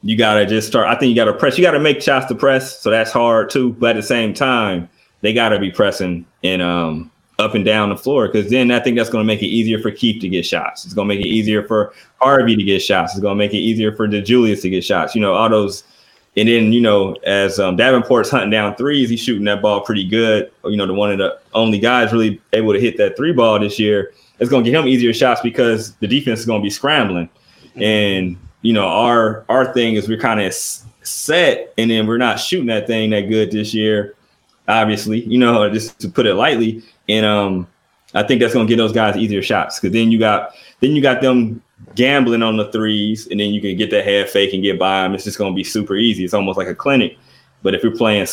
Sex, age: male, 20-39